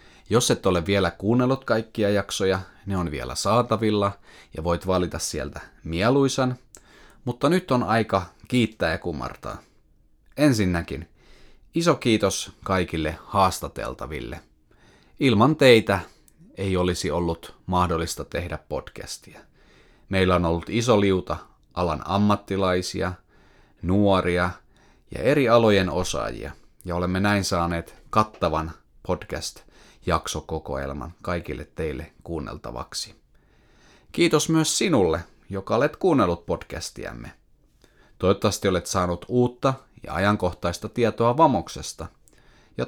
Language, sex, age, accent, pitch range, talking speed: Finnish, male, 30-49, native, 85-115 Hz, 105 wpm